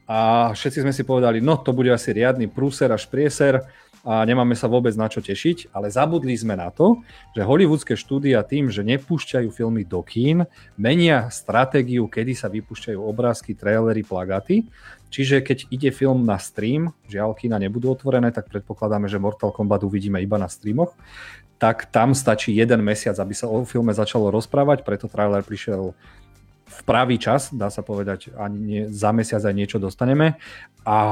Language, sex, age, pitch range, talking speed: Slovak, male, 40-59, 105-125 Hz, 170 wpm